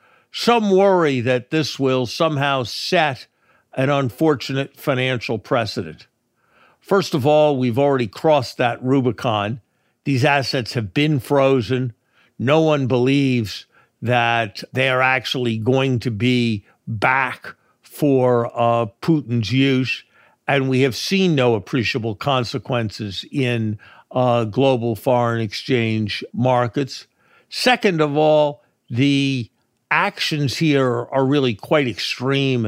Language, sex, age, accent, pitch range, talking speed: English, male, 60-79, American, 120-145 Hz, 115 wpm